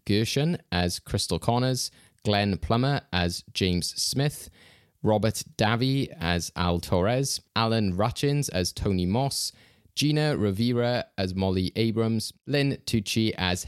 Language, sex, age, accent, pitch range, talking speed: English, male, 20-39, British, 90-110 Hz, 120 wpm